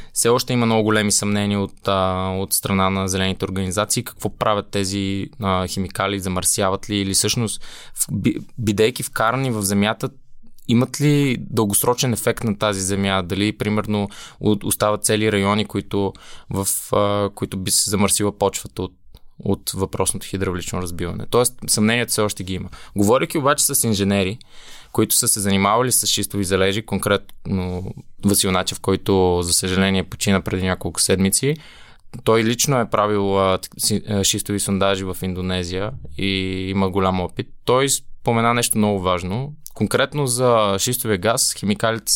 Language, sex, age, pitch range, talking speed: Bulgarian, male, 20-39, 95-115 Hz, 140 wpm